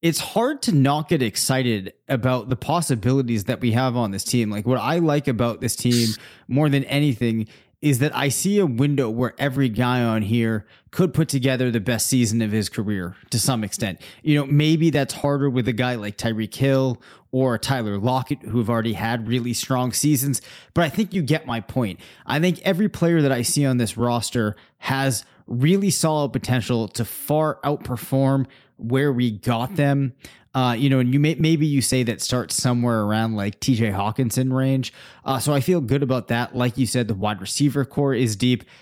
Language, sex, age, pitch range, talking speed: English, male, 20-39, 115-140 Hz, 200 wpm